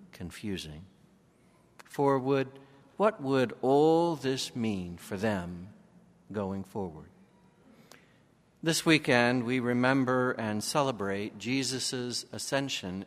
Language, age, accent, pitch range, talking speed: English, 60-79, American, 105-140 Hz, 90 wpm